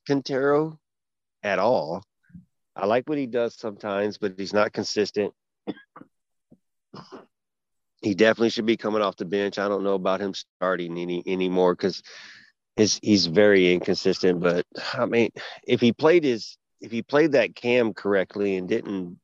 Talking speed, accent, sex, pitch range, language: 155 wpm, American, male, 100-120 Hz, English